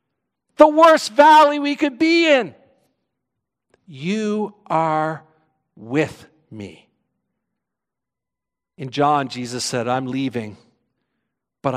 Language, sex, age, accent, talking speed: English, male, 50-69, American, 90 wpm